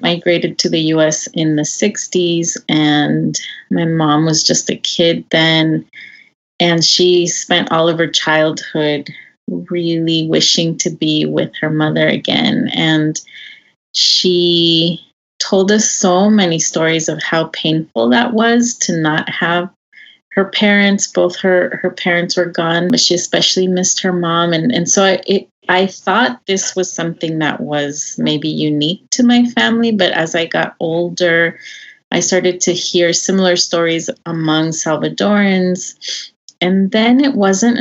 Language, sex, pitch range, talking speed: English, female, 160-185 Hz, 145 wpm